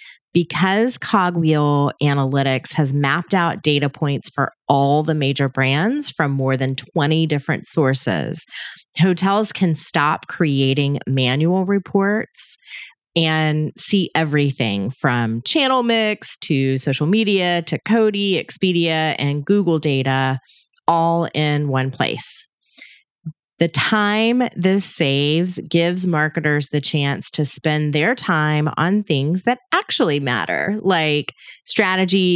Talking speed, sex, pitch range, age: 115 wpm, female, 140-190 Hz, 30-49